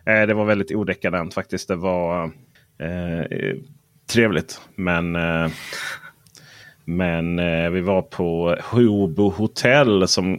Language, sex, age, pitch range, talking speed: Swedish, male, 30-49, 100-125 Hz, 110 wpm